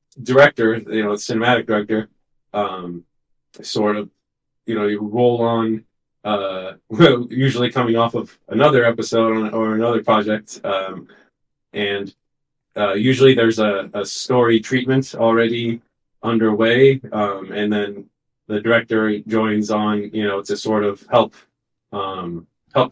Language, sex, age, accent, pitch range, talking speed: English, male, 30-49, American, 105-120 Hz, 130 wpm